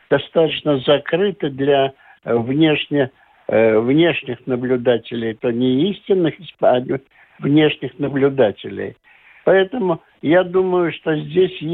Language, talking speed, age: Russian, 90 wpm, 60-79